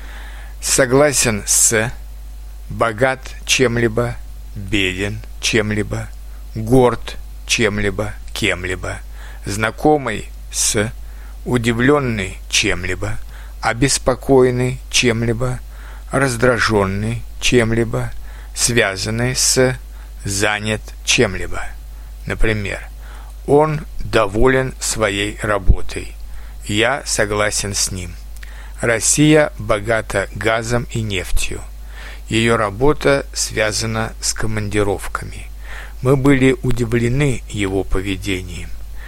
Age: 60-79